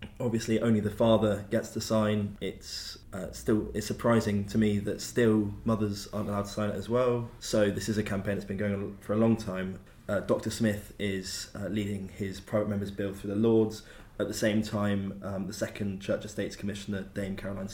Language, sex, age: English, male, 20-39